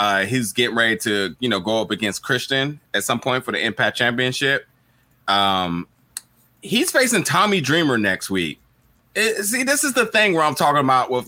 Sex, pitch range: male, 105-175 Hz